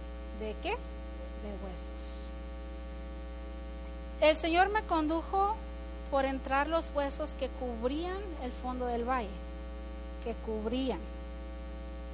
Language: Spanish